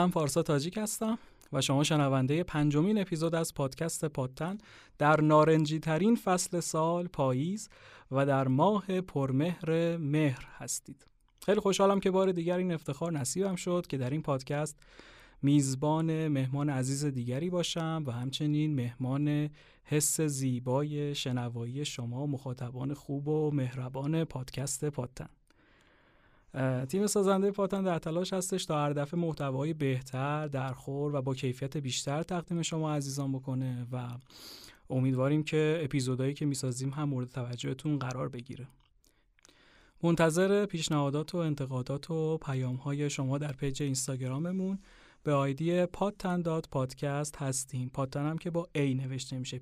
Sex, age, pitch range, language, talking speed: male, 30-49, 135-165 Hz, Persian, 135 wpm